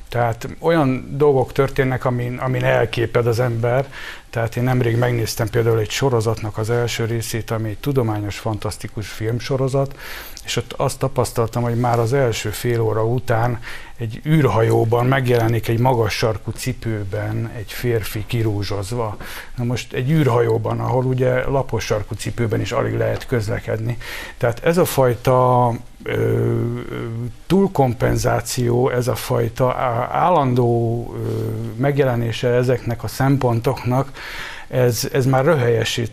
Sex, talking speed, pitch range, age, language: male, 125 wpm, 115-135 Hz, 60-79, Hungarian